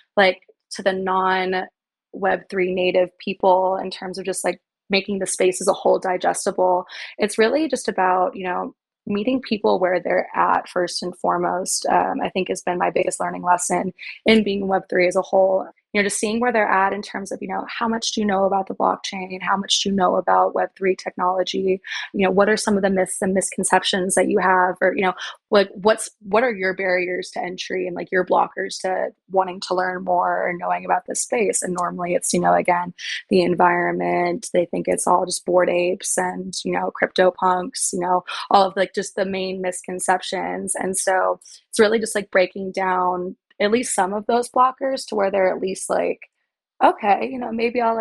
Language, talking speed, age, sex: English, 205 wpm, 20-39, female